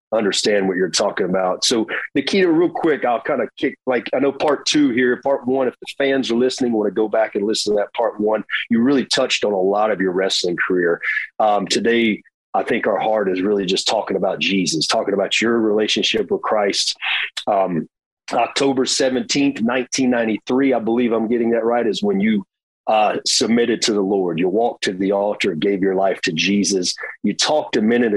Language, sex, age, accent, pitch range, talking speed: English, male, 40-59, American, 105-140 Hz, 205 wpm